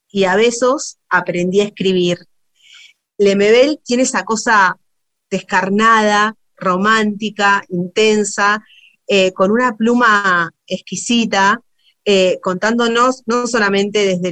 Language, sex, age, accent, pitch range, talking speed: Spanish, female, 30-49, Argentinian, 185-220 Hz, 95 wpm